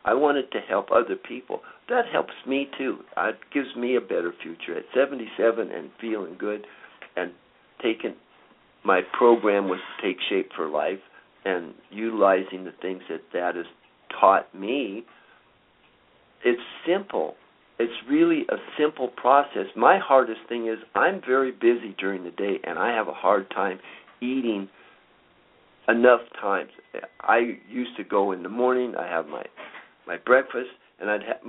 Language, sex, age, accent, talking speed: English, male, 60-79, American, 150 wpm